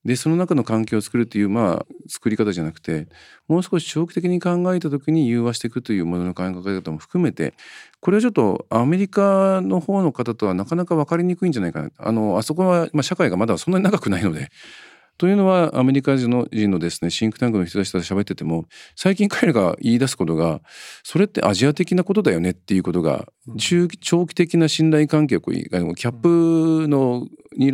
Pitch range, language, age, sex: 100-165 Hz, Japanese, 50-69, male